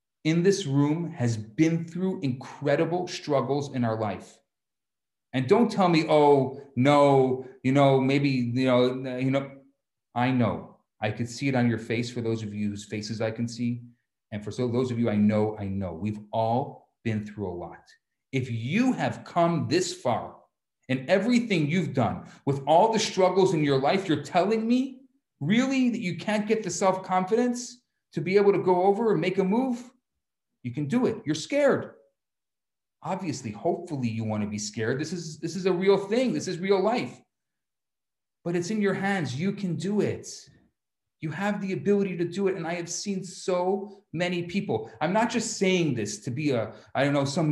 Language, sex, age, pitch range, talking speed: English, male, 40-59, 130-200 Hz, 195 wpm